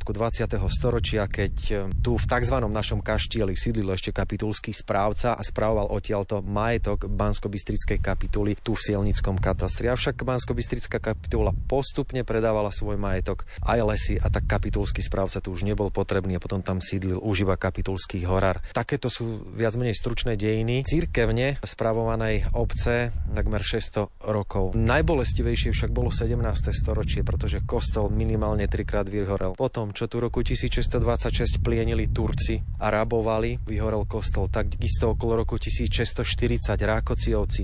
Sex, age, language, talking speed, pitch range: male, 30-49, Slovak, 135 wpm, 100-115 Hz